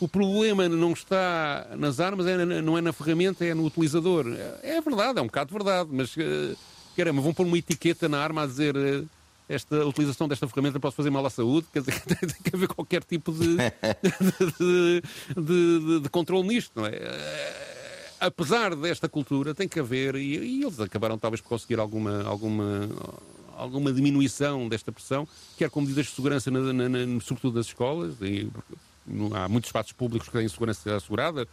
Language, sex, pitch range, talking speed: Portuguese, male, 115-170 Hz, 190 wpm